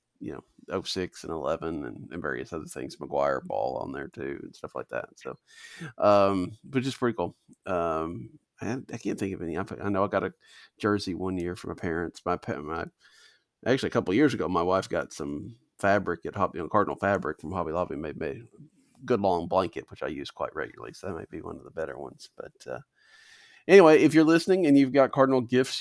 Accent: American